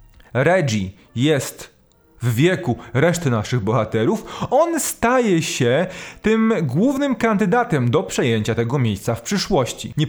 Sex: male